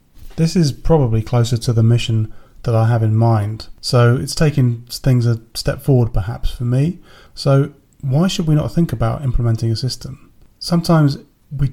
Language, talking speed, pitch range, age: English, 175 wpm, 115-140 Hz, 30-49